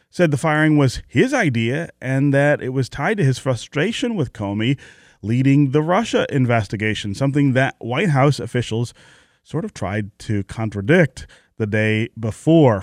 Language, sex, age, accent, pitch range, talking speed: English, male, 30-49, American, 110-145 Hz, 155 wpm